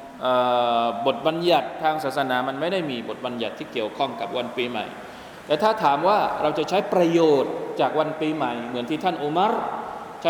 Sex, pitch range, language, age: male, 135-160 Hz, Thai, 20-39